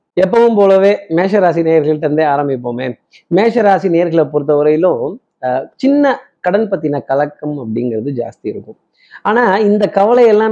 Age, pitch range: 30-49, 145-190 Hz